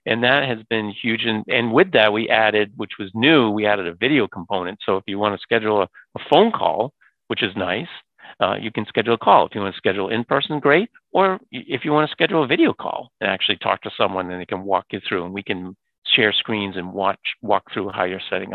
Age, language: 50-69, English